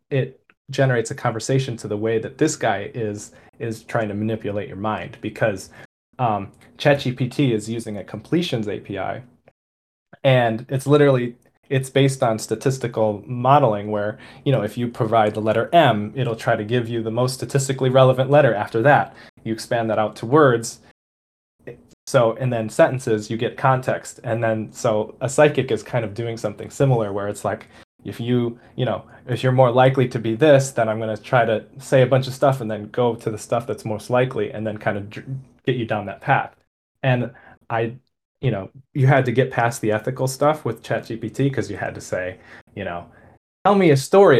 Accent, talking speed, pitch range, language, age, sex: American, 195 wpm, 110-130 Hz, English, 20-39, male